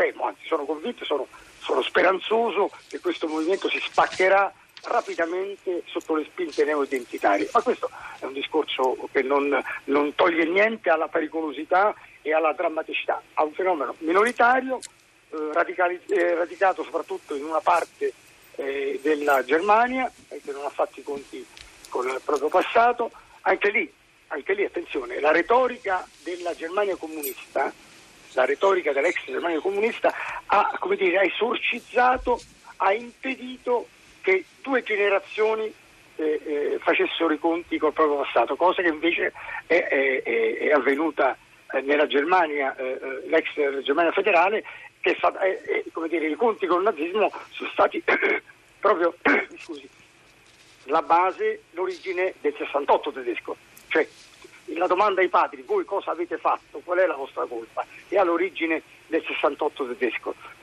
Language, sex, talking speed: Italian, male, 145 wpm